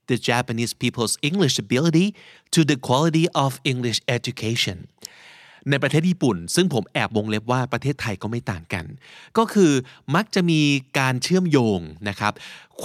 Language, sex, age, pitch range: Thai, male, 30-49, 120-160 Hz